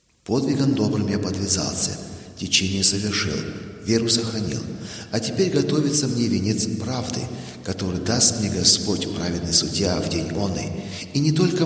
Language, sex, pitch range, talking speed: German, male, 100-145 Hz, 140 wpm